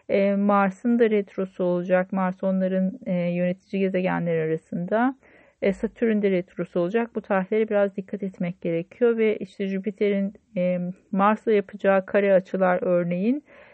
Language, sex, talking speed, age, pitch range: Turkish, female, 120 wpm, 40-59, 190-225 Hz